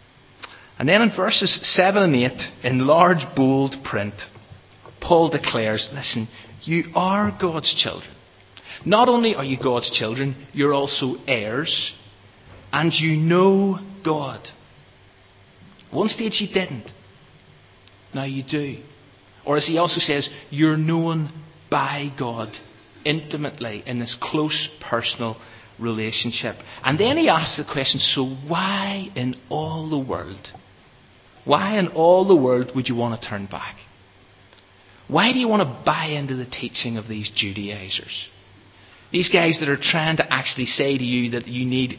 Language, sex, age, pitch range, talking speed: English, male, 30-49, 110-160 Hz, 145 wpm